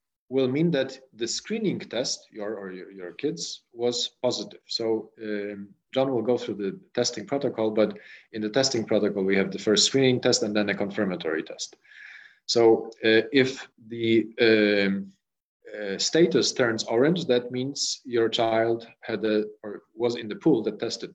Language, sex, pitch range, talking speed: English, male, 105-155 Hz, 170 wpm